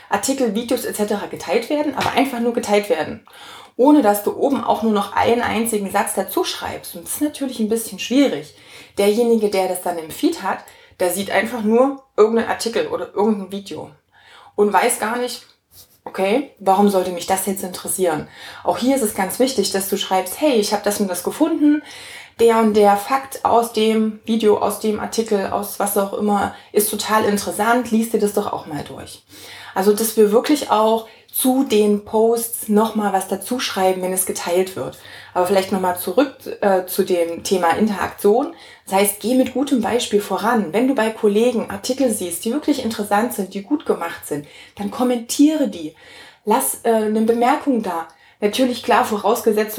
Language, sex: German, female